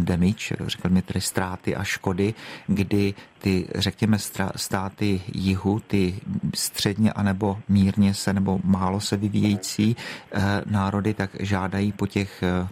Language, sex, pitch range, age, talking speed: Czech, male, 95-105 Hz, 40-59, 125 wpm